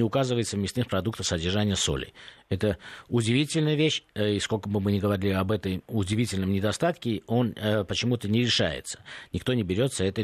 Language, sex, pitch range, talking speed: Russian, male, 95-130 Hz, 165 wpm